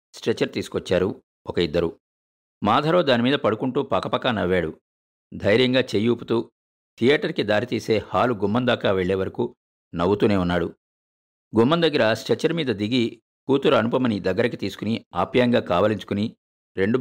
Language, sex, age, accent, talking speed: Telugu, male, 50-69, native, 110 wpm